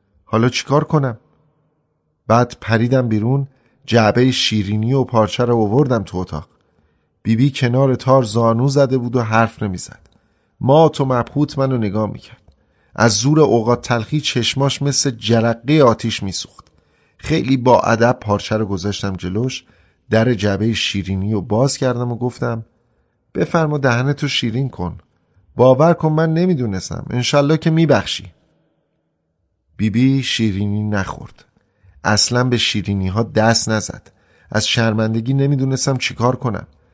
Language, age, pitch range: Persian, 30-49, 100-135 Hz